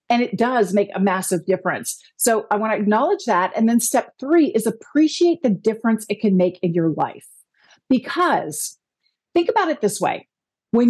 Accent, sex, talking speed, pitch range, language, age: American, female, 185 wpm, 210-290 Hz, English, 50-69